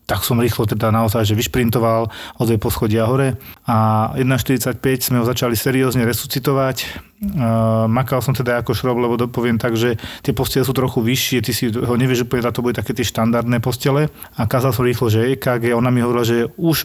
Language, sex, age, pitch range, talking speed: Slovak, male, 30-49, 115-130 Hz, 195 wpm